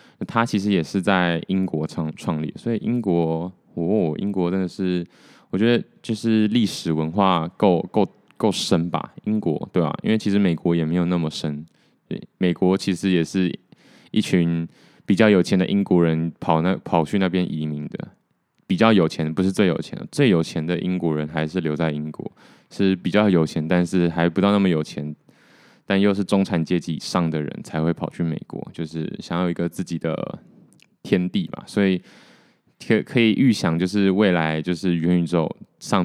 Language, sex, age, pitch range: Chinese, male, 20-39, 80-95 Hz